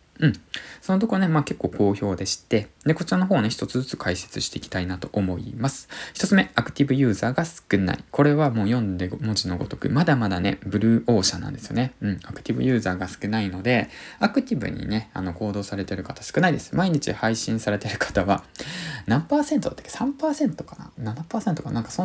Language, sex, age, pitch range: Japanese, male, 20-39, 100-170 Hz